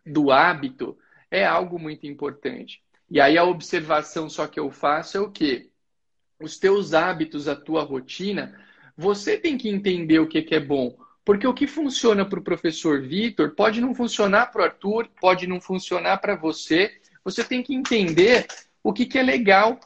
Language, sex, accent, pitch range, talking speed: Portuguese, male, Brazilian, 180-245 Hz, 175 wpm